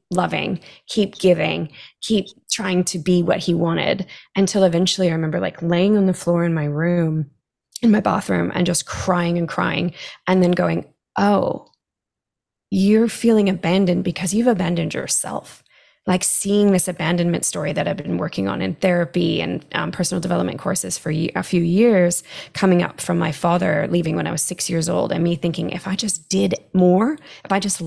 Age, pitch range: 20-39, 165-190 Hz